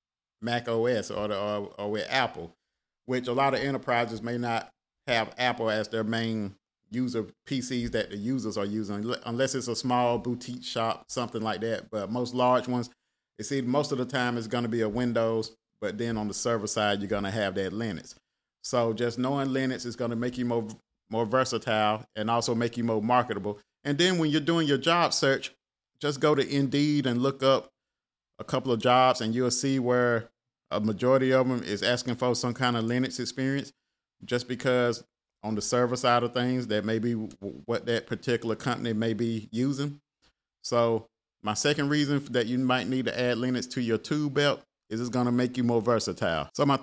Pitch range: 115-135 Hz